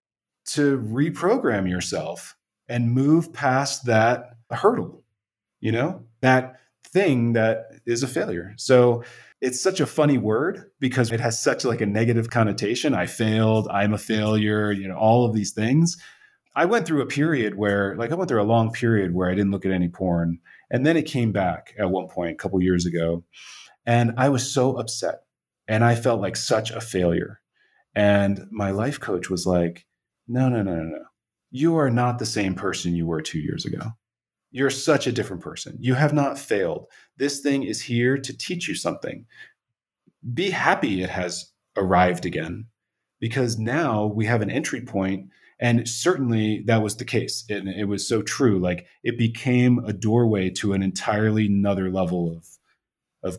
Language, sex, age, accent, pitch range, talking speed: English, male, 30-49, American, 100-125 Hz, 180 wpm